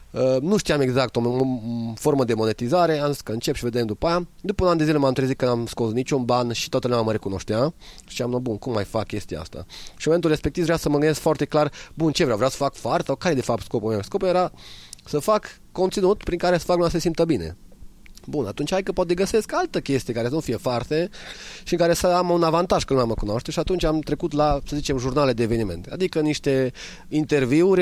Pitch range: 120-170 Hz